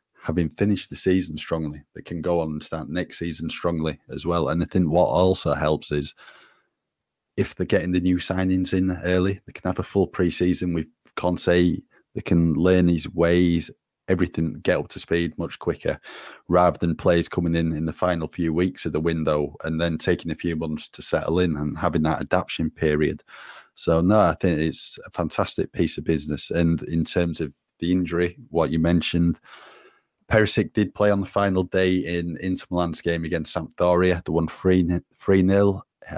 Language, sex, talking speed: English, male, 190 wpm